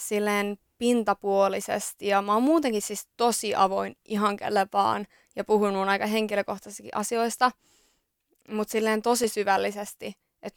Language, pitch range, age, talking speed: Finnish, 200-225 Hz, 20-39, 120 wpm